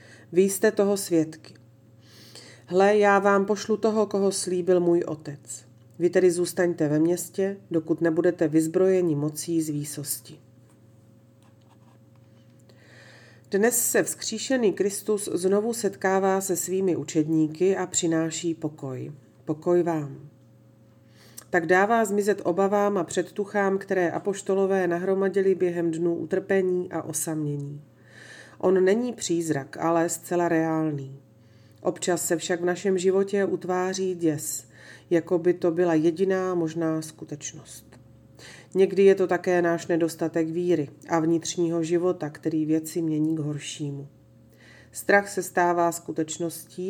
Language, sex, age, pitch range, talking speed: Slovak, female, 40-59, 150-185 Hz, 120 wpm